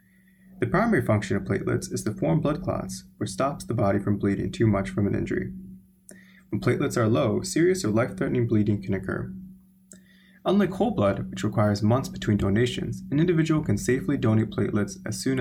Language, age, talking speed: English, 20-39, 185 wpm